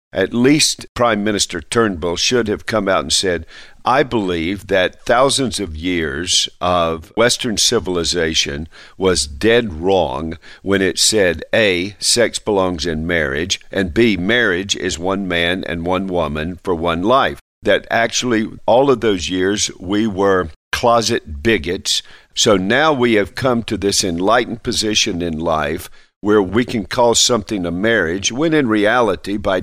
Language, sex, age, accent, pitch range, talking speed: English, male, 50-69, American, 90-115 Hz, 150 wpm